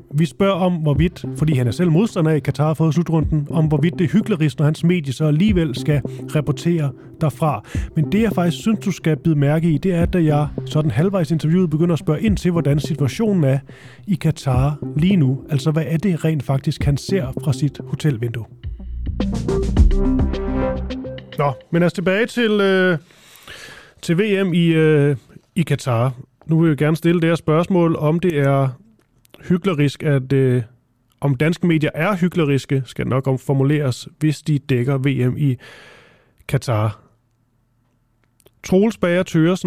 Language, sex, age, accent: Danish, male, 30-49, native